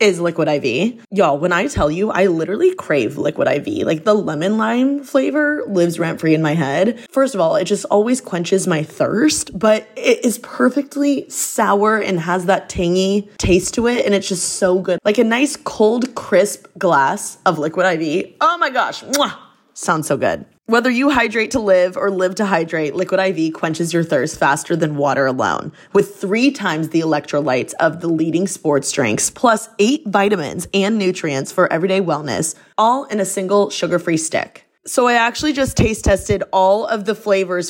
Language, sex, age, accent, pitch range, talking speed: English, female, 20-39, American, 170-225 Hz, 185 wpm